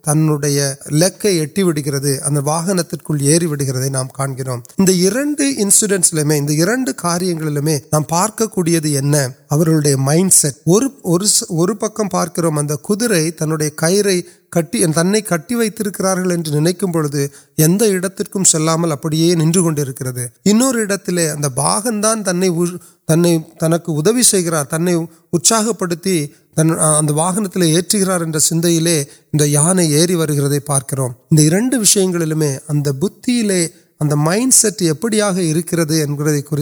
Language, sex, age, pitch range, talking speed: Urdu, male, 30-49, 150-195 Hz, 50 wpm